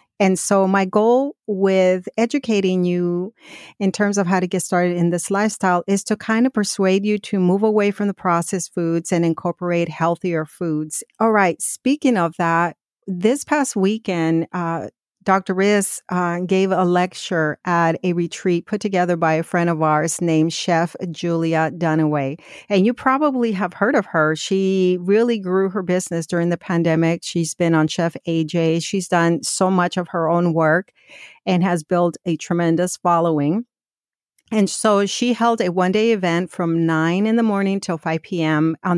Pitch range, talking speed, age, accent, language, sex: 165-195 Hz, 170 wpm, 50-69, American, English, female